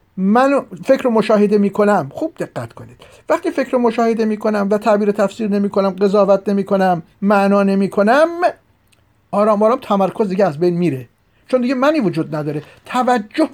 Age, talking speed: 50-69, 150 wpm